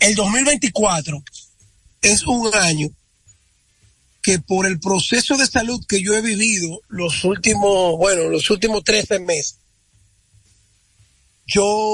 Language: Spanish